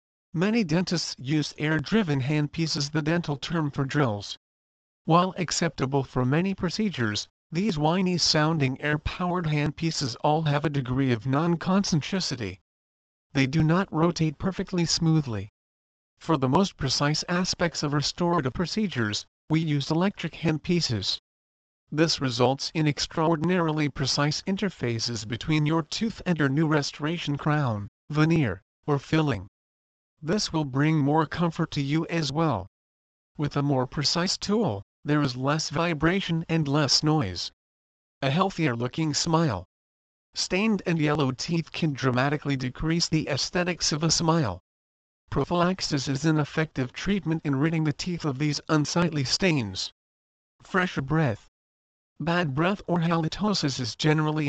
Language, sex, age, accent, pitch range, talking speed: English, male, 50-69, American, 125-165 Hz, 130 wpm